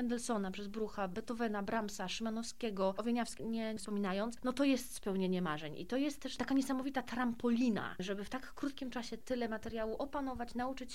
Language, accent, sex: Polish, native, female